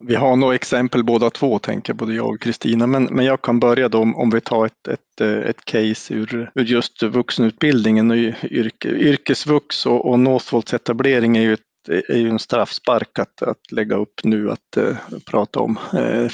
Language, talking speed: Swedish, 190 wpm